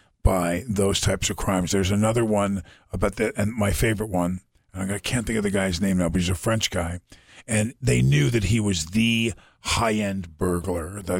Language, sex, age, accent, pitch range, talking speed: English, male, 50-69, American, 100-125 Hz, 205 wpm